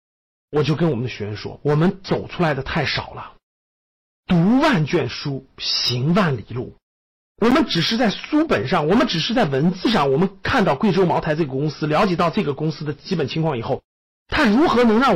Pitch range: 140-210 Hz